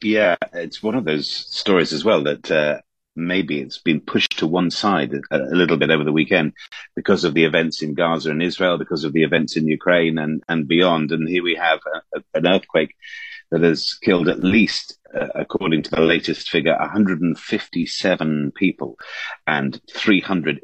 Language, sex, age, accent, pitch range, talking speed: English, male, 40-59, British, 75-90 Hz, 185 wpm